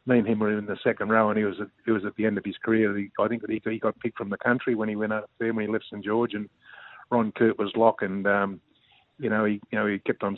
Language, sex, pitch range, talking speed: English, male, 105-115 Hz, 325 wpm